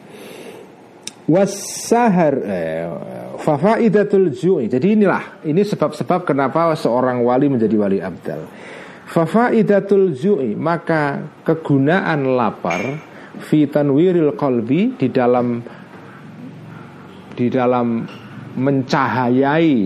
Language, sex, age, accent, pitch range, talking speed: Indonesian, male, 40-59, native, 110-155 Hz, 75 wpm